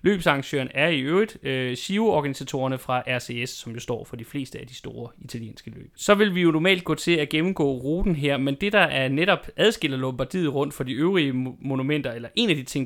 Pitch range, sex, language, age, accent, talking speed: 125-160 Hz, male, Danish, 30-49, native, 220 wpm